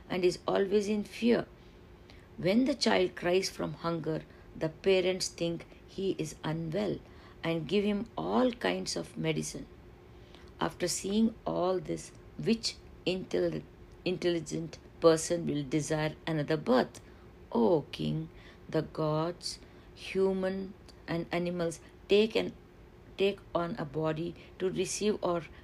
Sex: female